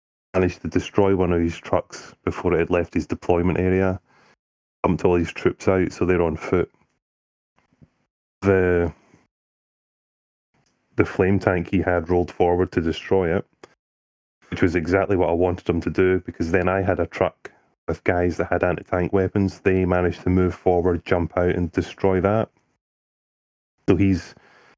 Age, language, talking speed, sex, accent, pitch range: 30-49, English, 160 wpm, male, British, 85-95 Hz